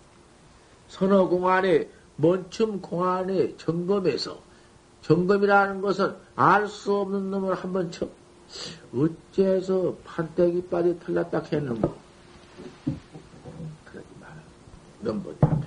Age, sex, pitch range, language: 50-69, male, 155-200 Hz, Korean